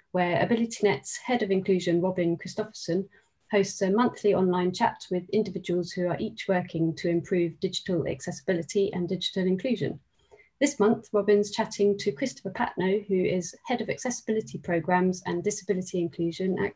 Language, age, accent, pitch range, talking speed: English, 30-49, British, 170-205 Hz, 150 wpm